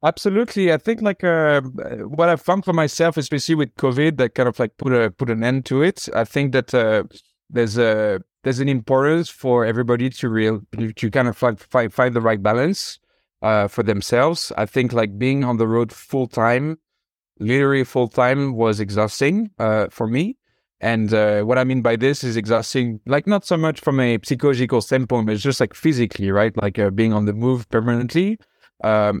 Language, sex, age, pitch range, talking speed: English, male, 30-49, 110-135 Hz, 200 wpm